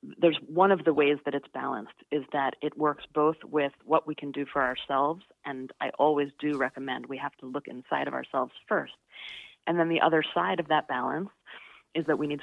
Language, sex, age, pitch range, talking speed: English, female, 30-49, 145-170 Hz, 215 wpm